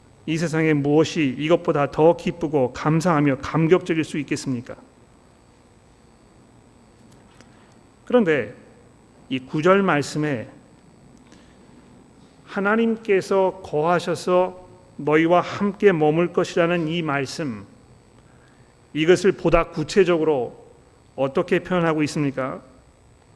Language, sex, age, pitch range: Korean, male, 40-59, 120-170 Hz